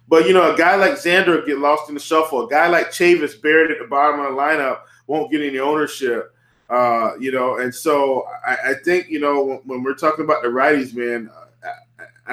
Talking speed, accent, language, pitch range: 225 wpm, American, English, 125-155 Hz